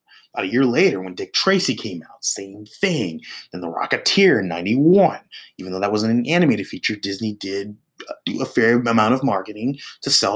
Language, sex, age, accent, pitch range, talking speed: English, male, 30-49, American, 95-120 Hz, 190 wpm